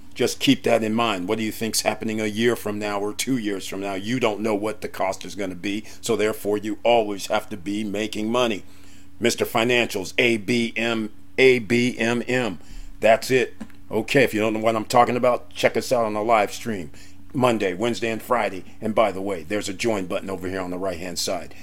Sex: male